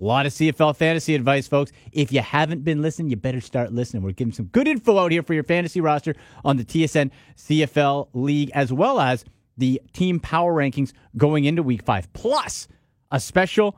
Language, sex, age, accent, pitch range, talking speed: English, male, 30-49, American, 135-175 Hz, 200 wpm